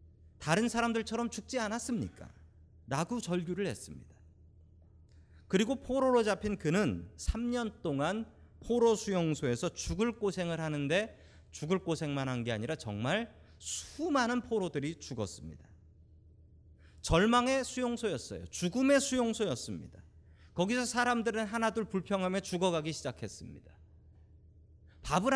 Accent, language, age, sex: native, Korean, 40-59, male